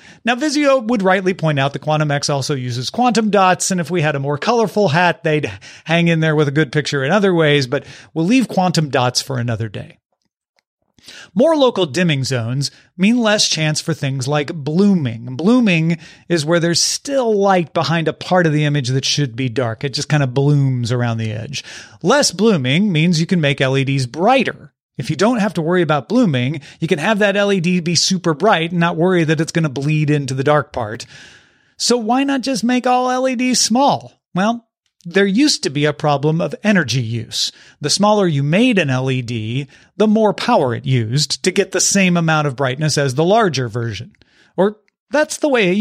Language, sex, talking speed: English, male, 205 wpm